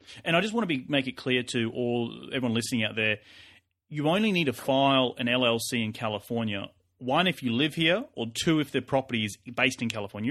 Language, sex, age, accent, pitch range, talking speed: English, male, 30-49, Australian, 105-125 Hz, 220 wpm